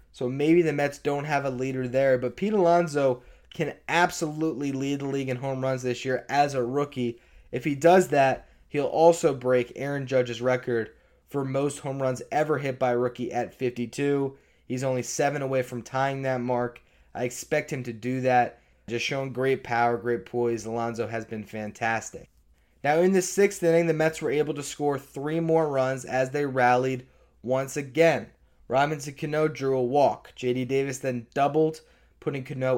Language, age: English, 20-39